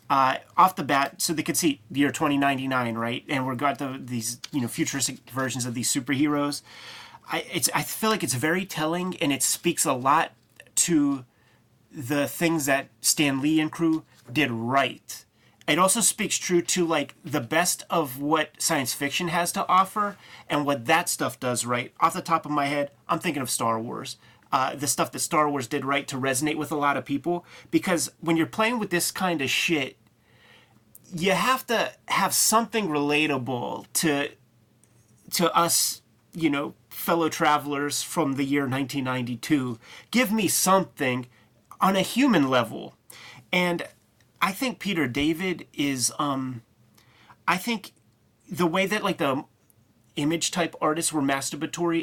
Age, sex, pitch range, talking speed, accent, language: 30-49, male, 130-170 Hz, 170 wpm, American, English